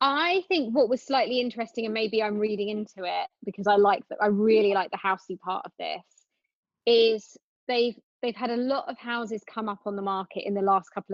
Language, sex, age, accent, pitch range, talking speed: English, female, 20-39, British, 200-245 Hz, 220 wpm